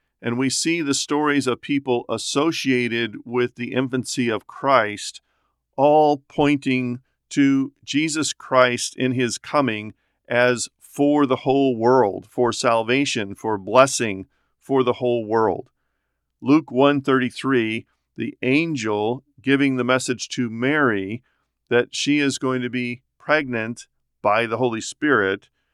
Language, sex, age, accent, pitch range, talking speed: English, male, 50-69, American, 120-140 Hz, 125 wpm